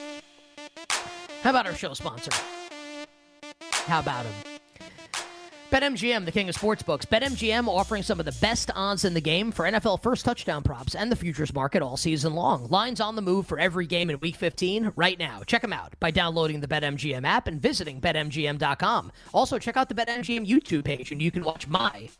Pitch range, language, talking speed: 160-230 Hz, English, 190 wpm